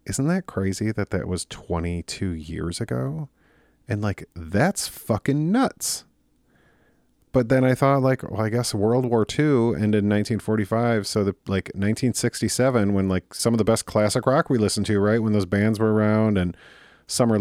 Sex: male